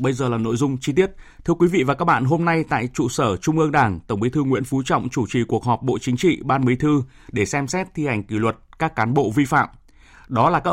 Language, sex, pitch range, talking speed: Vietnamese, male, 120-160 Hz, 290 wpm